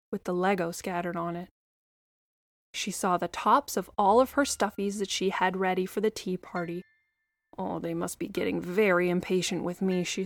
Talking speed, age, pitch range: 195 wpm, 20-39, 190-290 Hz